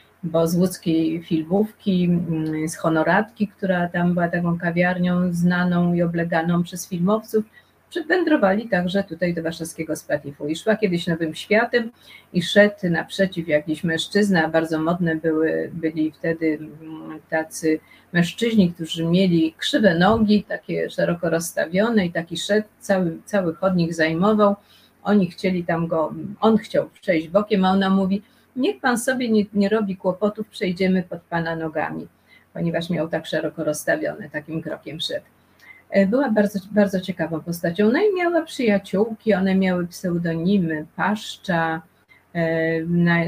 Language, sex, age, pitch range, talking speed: Polish, female, 30-49, 165-205 Hz, 135 wpm